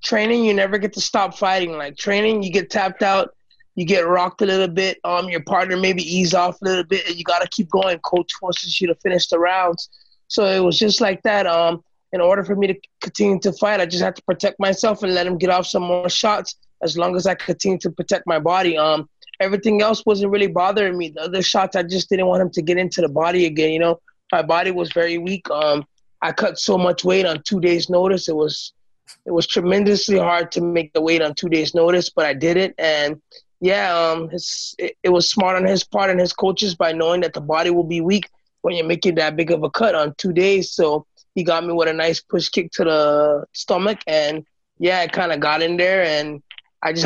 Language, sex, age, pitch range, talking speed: English, male, 20-39, 165-190 Hz, 240 wpm